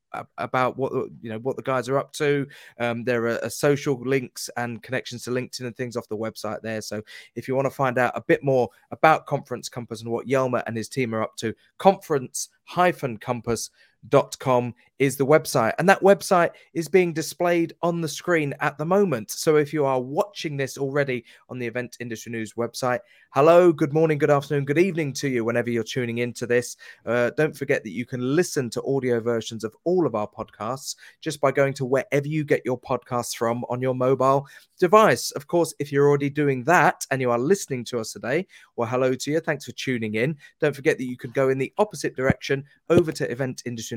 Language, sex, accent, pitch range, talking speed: English, male, British, 120-150 Hz, 220 wpm